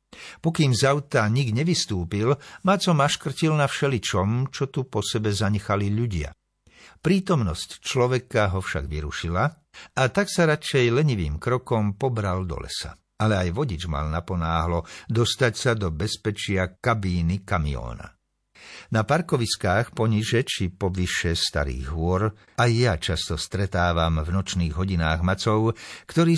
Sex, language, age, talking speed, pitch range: male, Slovak, 60-79, 125 wpm, 90-125 Hz